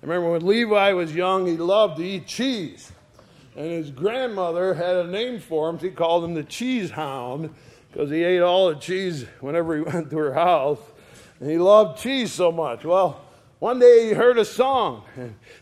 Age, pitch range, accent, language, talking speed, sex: 50-69, 165-225 Hz, American, English, 195 wpm, male